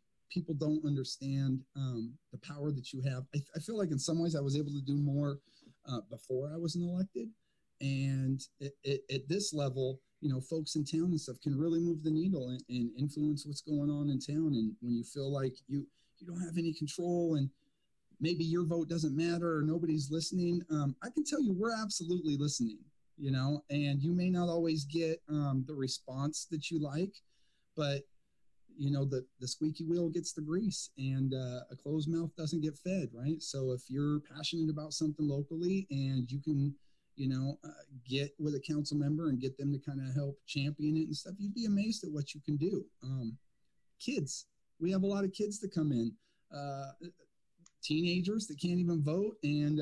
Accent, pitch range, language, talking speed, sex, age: American, 140-170 Hz, English, 200 wpm, male, 40-59